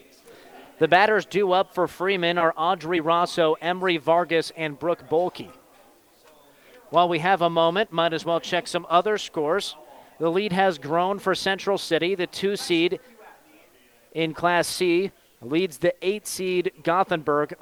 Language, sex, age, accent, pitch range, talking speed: English, male, 40-59, American, 160-185 Hz, 145 wpm